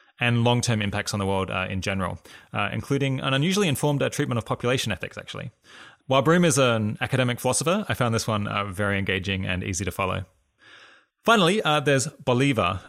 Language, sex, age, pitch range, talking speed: English, male, 20-39, 100-125 Hz, 190 wpm